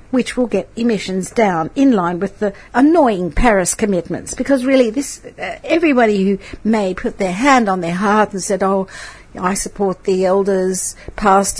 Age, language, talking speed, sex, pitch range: 60-79, English, 165 wpm, female, 185-250 Hz